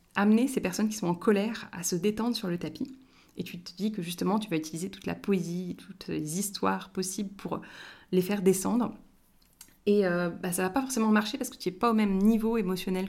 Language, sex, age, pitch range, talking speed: French, female, 20-39, 175-220 Hz, 235 wpm